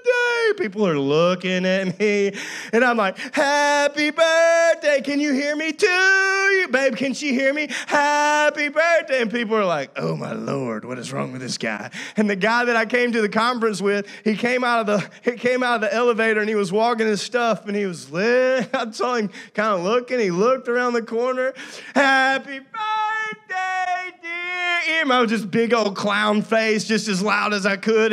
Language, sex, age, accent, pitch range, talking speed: English, male, 30-49, American, 195-255 Hz, 200 wpm